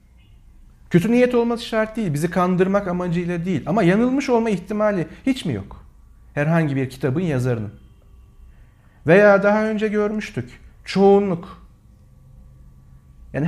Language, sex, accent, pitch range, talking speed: Turkish, male, native, 125-205 Hz, 115 wpm